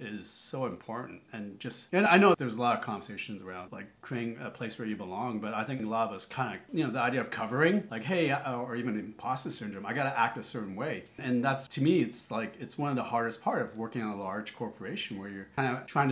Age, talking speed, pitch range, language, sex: 30-49, 265 wpm, 115-140 Hz, English, male